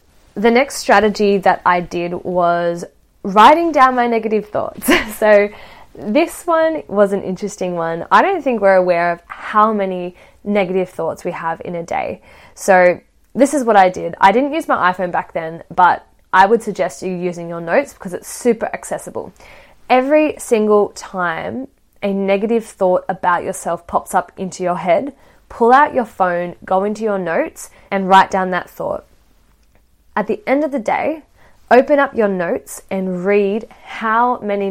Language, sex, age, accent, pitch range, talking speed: English, female, 10-29, Australian, 180-225 Hz, 170 wpm